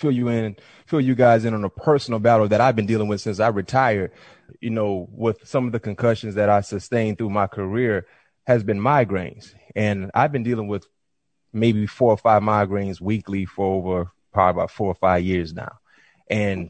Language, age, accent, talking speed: English, 20-39, American, 200 wpm